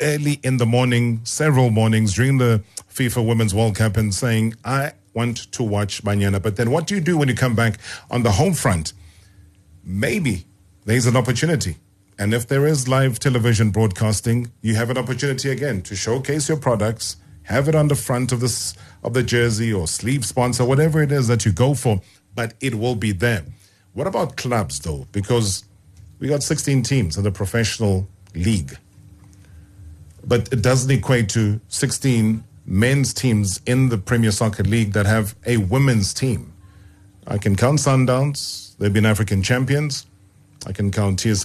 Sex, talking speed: male, 175 wpm